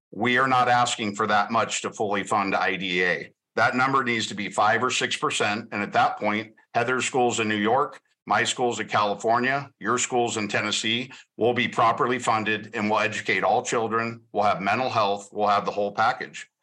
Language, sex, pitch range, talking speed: English, male, 105-120 Hz, 200 wpm